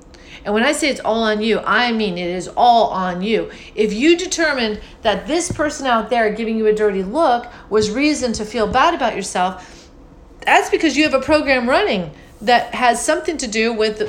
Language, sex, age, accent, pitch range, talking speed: English, female, 40-59, American, 190-265 Hz, 205 wpm